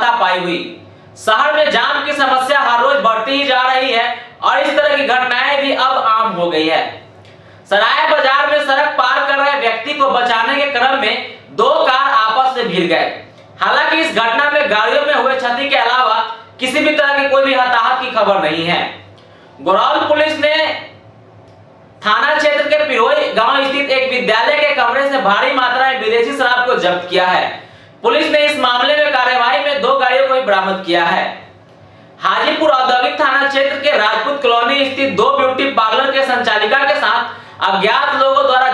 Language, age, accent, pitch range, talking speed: Hindi, 40-59, native, 225-280 Hz, 130 wpm